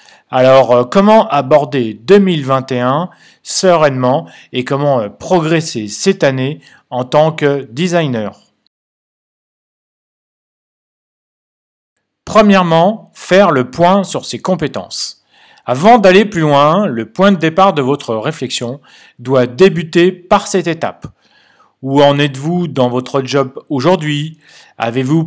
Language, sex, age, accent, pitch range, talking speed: French, male, 40-59, French, 130-185 Hz, 105 wpm